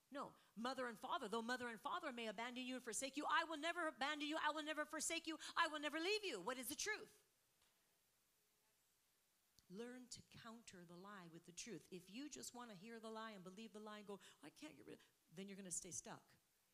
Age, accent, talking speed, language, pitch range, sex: 40-59, American, 240 wpm, English, 190-270 Hz, female